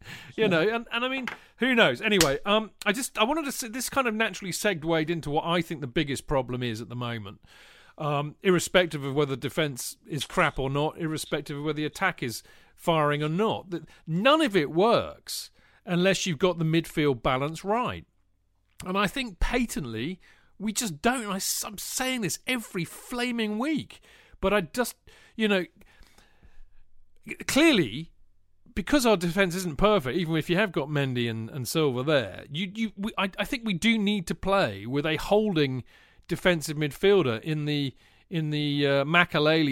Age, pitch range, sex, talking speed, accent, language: 40-59, 135-205 Hz, male, 180 wpm, British, English